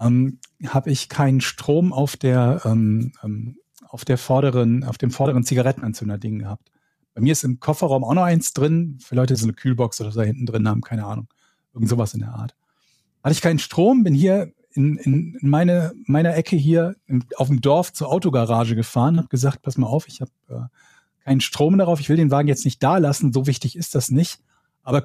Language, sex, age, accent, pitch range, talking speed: German, male, 40-59, German, 125-165 Hz, 210 wpm